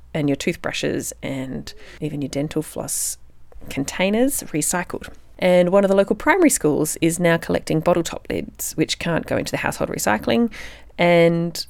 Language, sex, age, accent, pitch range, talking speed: English, female, 30-49, Australian, 145-195 Hz, 160 wpm